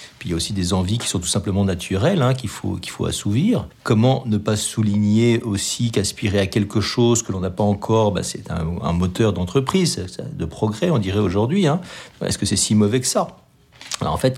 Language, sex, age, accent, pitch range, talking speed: French, male, 40-59, French, 95-115 Hz, 225 wpm